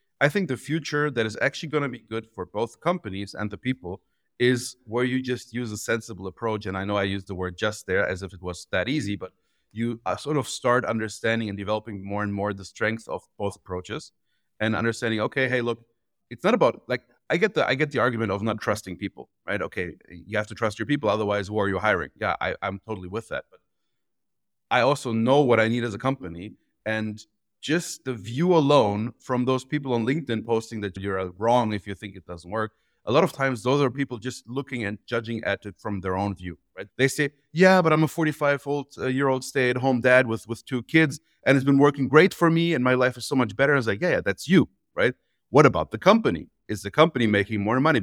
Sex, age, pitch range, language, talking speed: male, 30-49, 100-135 Hz, English, 235 wpm